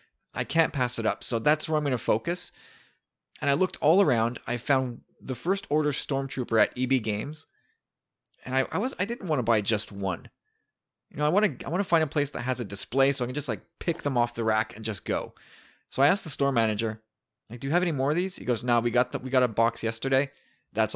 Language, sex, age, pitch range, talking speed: English, male, 20-39, 115-150 Hz, 255 wpm